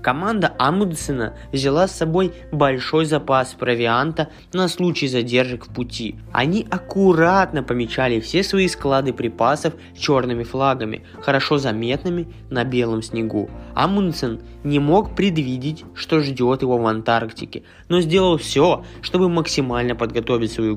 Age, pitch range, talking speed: 20-39, 120-165 Hz, 125 wpm